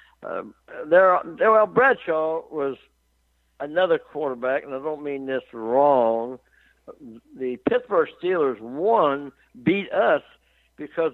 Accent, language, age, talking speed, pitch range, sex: American, English, 60-79, 100 wpm, 130-185 Hz, male